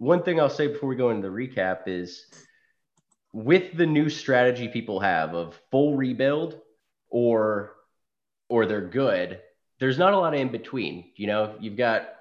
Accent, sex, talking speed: American, male, 170 wpm